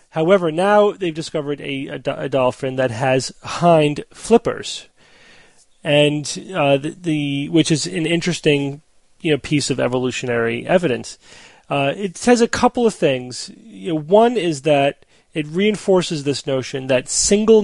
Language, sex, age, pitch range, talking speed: English, male, 30-49, 135-165 Hz, 150 wpm